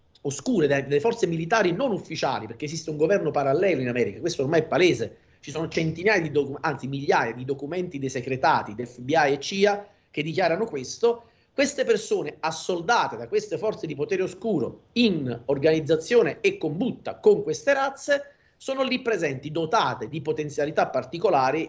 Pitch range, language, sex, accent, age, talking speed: 145-225 Hz, Italian, male, native, 40-59, 160 wpm